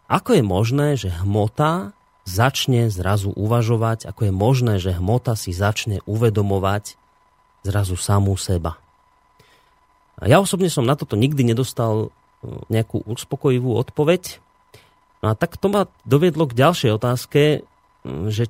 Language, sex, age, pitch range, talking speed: Slovak, male, 30-49, 100-135 Hz, 130 wpm